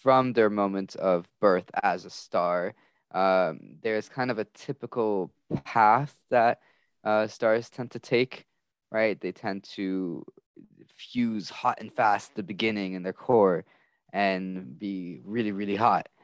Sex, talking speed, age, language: male, 150 wpm, 20-39, English